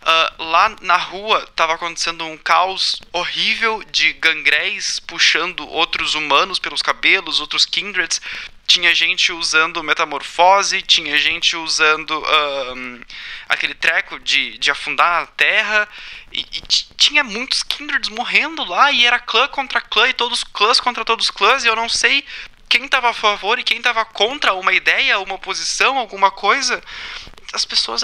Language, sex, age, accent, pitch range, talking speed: Portuguese, male, 20-39, Brazilian, 170-240 Hz, 155 wpm